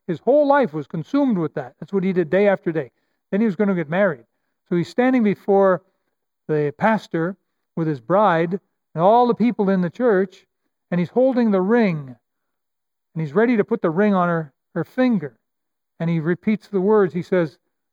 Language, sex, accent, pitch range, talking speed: English, male, American, 165-210 Hz, 200 wpm